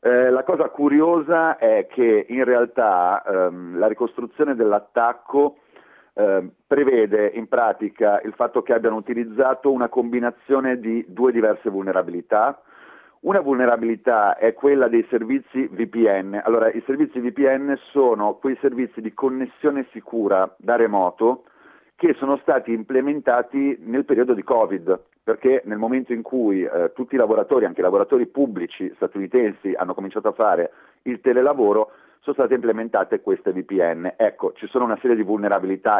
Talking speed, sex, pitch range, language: 145 wpm, male, 110-145 Hz, Italian